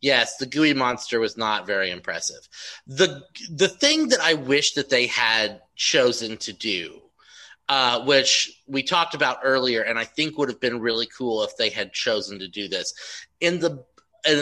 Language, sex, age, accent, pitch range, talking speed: English, male, 30-49, American, 120-170 Hz, 185 wpm